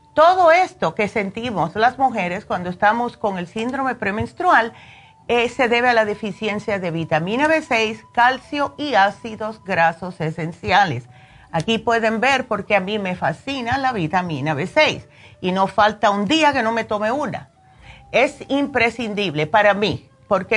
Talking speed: 150 wpm